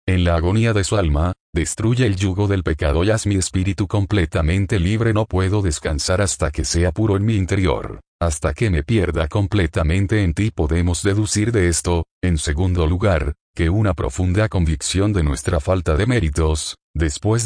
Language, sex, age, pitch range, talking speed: Spanish, male, 40-59, 80-105 Hz, 175 wpm